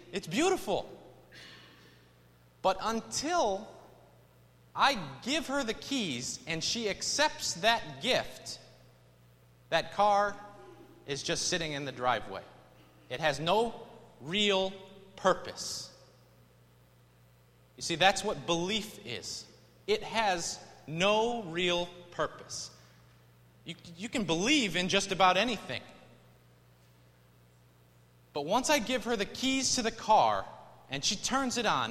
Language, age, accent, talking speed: English, 30-49, American, 115 wpm